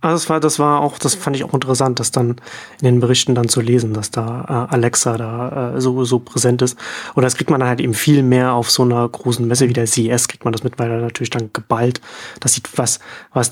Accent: German